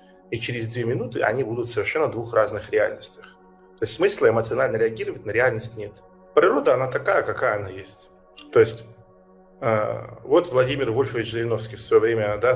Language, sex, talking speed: Russian, male, 170 wpm